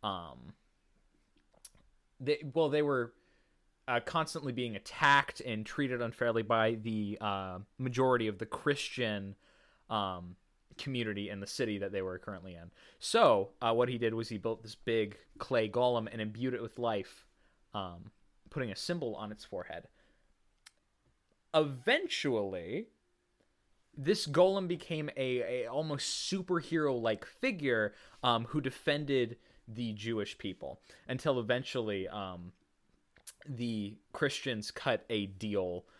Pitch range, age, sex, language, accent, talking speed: 100-130 Hz, 20-39, male, English, American, 125 wpm